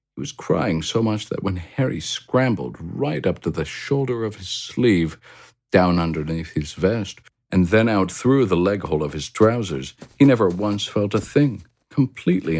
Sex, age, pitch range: male, 50-69, 75-105 Hz